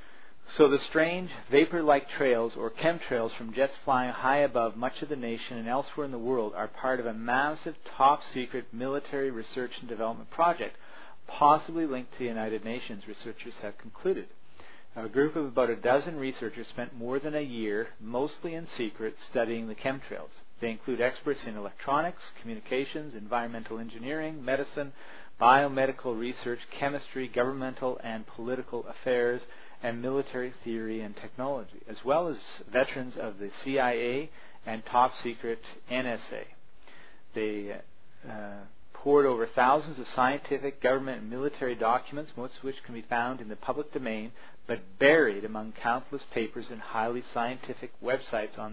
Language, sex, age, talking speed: English, male, 40-59, 150 wpm